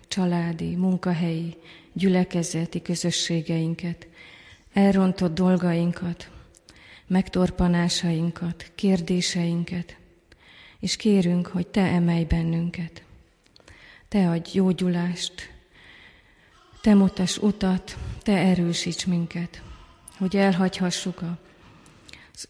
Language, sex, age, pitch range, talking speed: Hungarian, female, 30-49, 170-185 Hz, 70 wpm